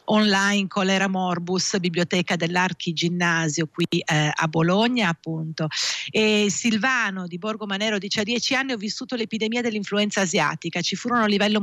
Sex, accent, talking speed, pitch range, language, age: female, native, 145 wpm, 170-215 Hz, Italian, 50-69